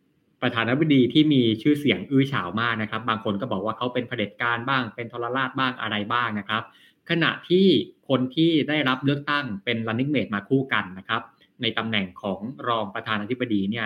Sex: male